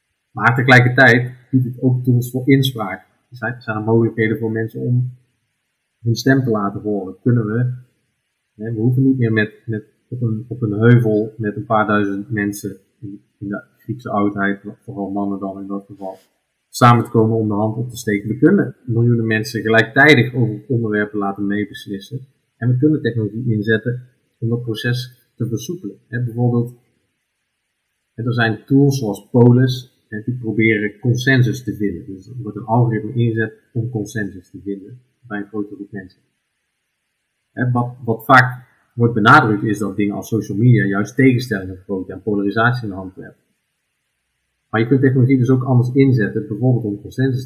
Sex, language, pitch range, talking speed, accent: male, Dutch, 105-125 Hz, 170 wpm, Dutch